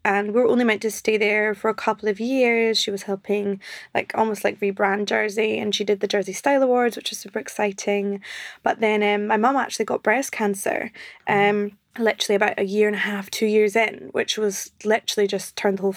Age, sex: 20-39, female